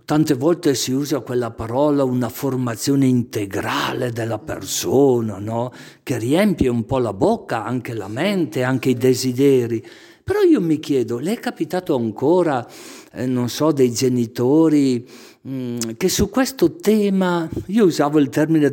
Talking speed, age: 145 wpm, 50-69